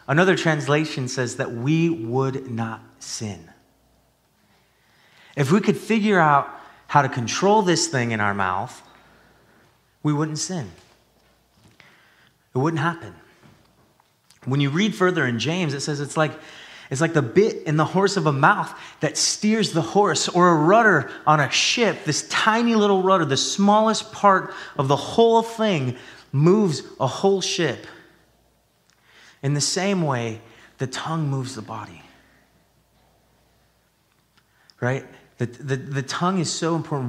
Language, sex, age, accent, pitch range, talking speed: English, male, 30-49, American, 120-170 Hz, 140 wpm